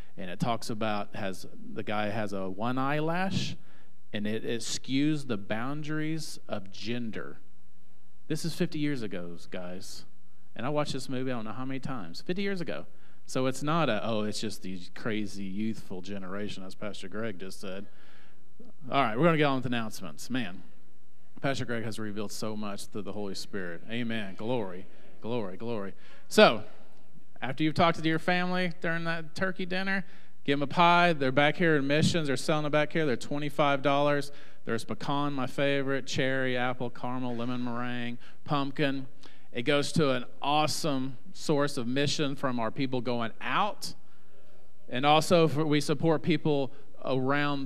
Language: English